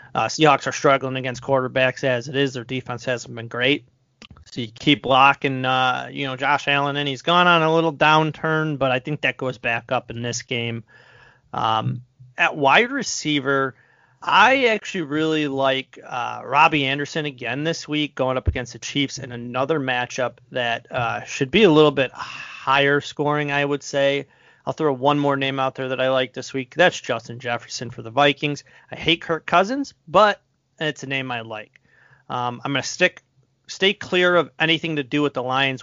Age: 30-49